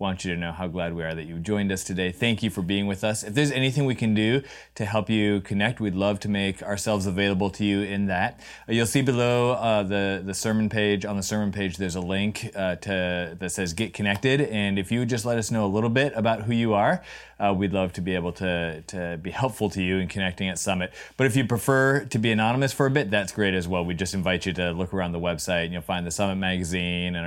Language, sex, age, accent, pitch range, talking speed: English, male, 30-49, American, 95-120 Hz, 270 wpm